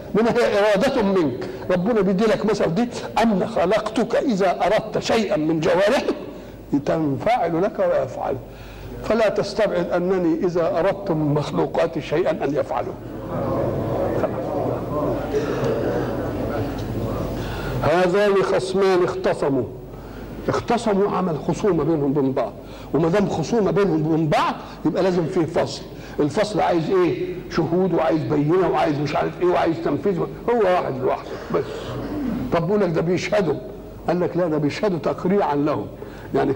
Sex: male